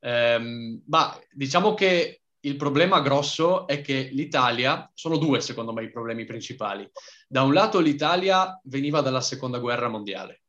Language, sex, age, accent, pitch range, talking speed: Italian, male, 20-39, native, 125-150 Hz, 145 wpm